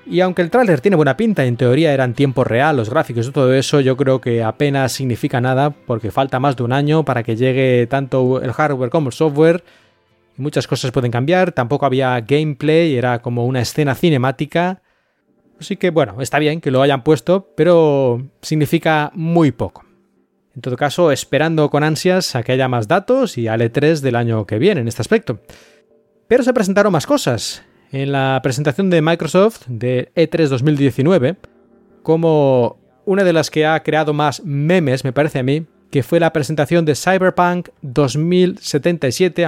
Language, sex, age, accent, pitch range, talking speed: Spanish, male, 20-39, Spanish, 130-165 Hz, 180 wpm